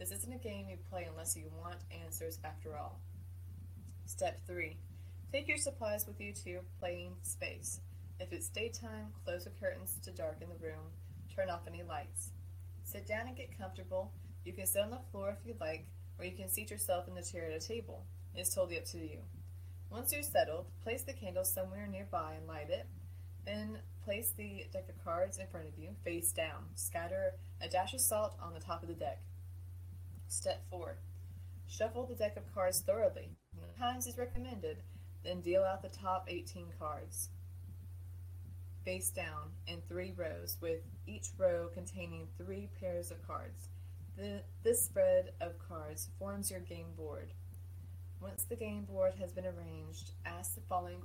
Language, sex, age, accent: English, female, 20-39, American